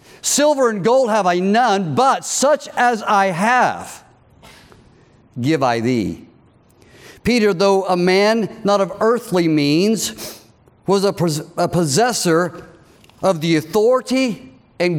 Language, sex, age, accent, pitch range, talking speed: English, male, 50-69, American, 150-220 Hz, 115 wpm